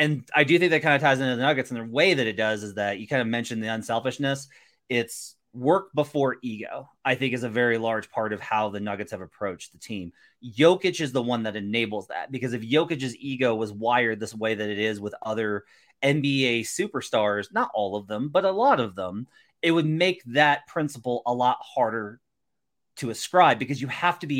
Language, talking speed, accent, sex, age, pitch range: English, 220 wpm, American, male, 30-49, 110-135 Hz